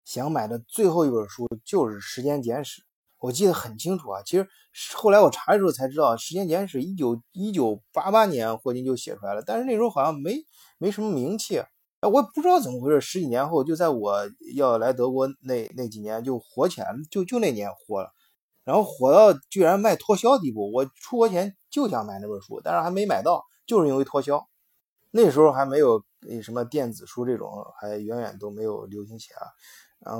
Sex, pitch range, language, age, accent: male, 110-145 Hz, Chinese, 20-39, native